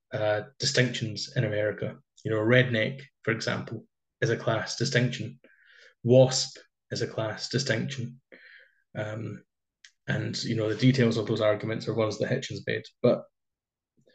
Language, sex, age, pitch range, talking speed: English, male, 20-39, 110-125 Hz, 140 wpm